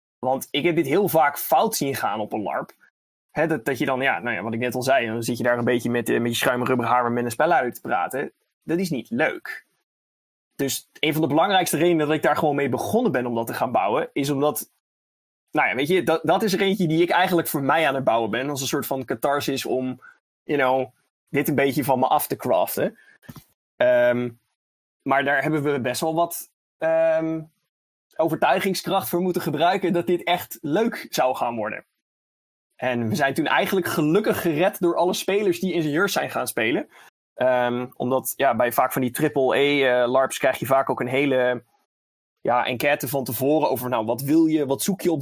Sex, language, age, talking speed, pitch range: male, Dutch, 20-39, 215 wpm, 125-160 Hz